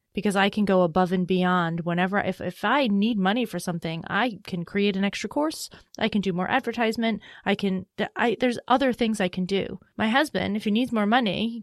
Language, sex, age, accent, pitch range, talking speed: English, female, 30-49, American, 190-230 Hz, 220 wpm